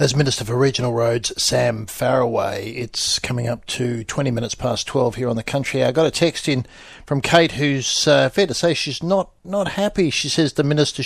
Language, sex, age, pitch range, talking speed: English, male, 60-79, 115-135 Hz, 210 wpm